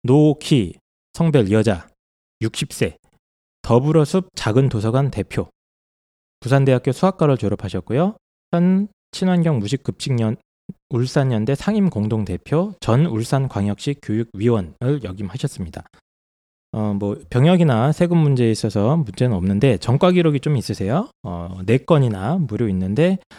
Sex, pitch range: male, 105-150 Hz